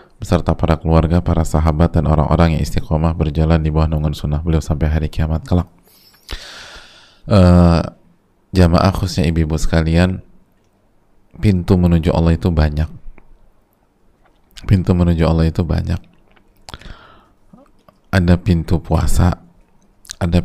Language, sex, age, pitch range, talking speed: Indonesian, male, 20-39, 85-90 Hz, 110 wpm